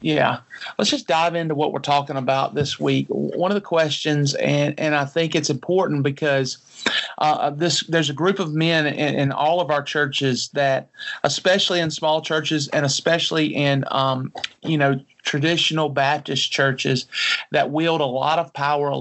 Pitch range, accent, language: 140-155 Hz, American, English